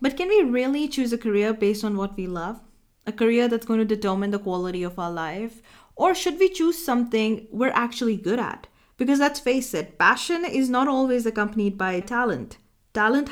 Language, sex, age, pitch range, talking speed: English, female, 30-49, 205-260 Hz, 200 wpm